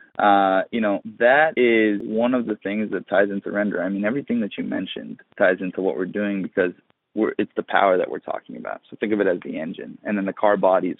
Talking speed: 245 wpm